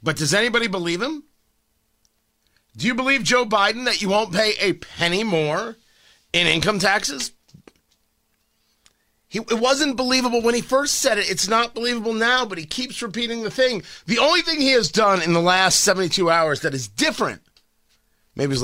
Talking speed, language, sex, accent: 175 wpm, English, male, American